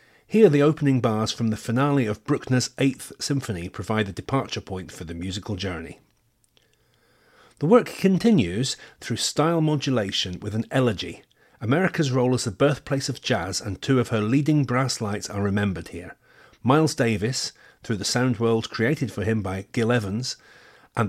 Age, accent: 40-59, British